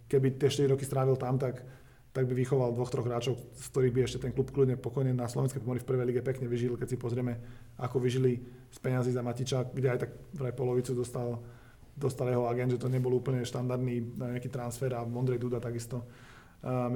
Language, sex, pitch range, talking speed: Slovak, male, 120-130 Hz, 210 wpm